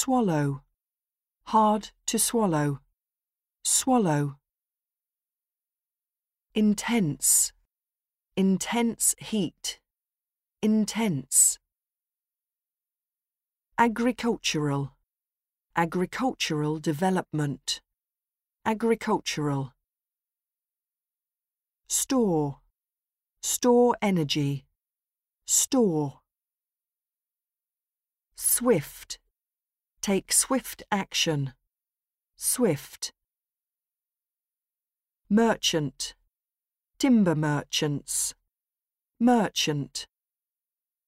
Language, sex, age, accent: Japanese, female, 40-59, British